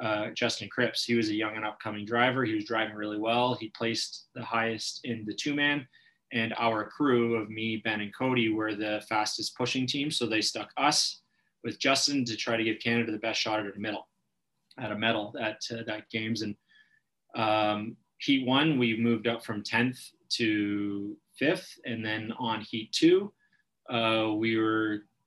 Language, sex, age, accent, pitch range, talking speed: English, male, 20-39, American, 110-120 Hz, 185 wpm